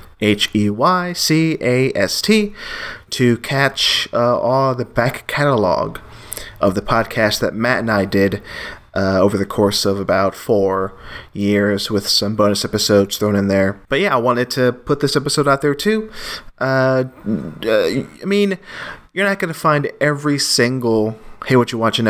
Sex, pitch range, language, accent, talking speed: male, 100-130 Hz, English, American, 155 wpm